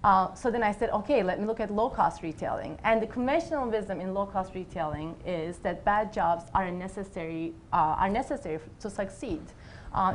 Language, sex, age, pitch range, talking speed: English, female, 30-49, 180-225 Hz, 190 wpm